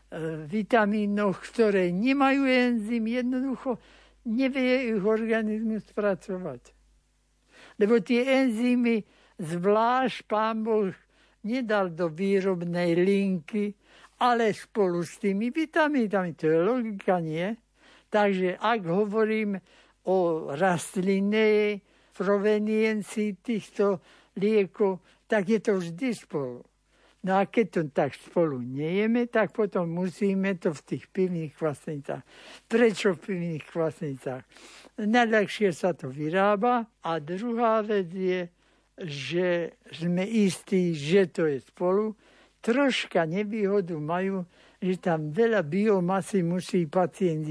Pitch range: 175-220 Hz